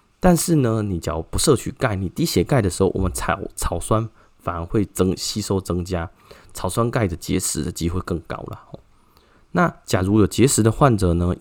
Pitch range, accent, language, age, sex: 90-120 Hz, native, Chinese, 20-39, male